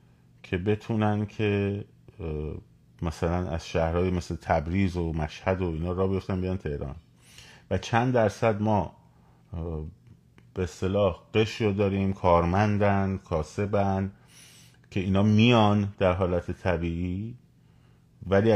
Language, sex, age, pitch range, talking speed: Persian, male, 30-49, 80-110 Hz, 110 wpm